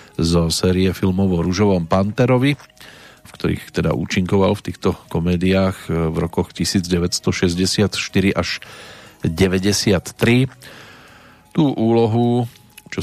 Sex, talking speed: male, 95 wpm